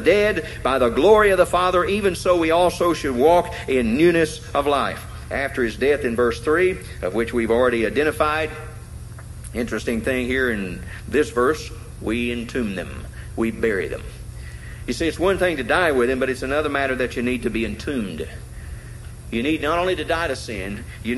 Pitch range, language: 115-160 Hz, English